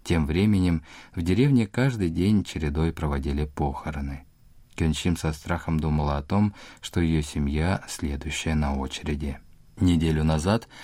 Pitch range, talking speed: 75-110 Hz, 125 wpm